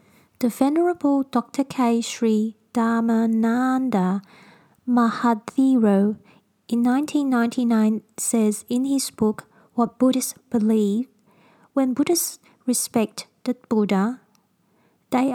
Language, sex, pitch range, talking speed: English, female, 210-245 Hz, 85 wpm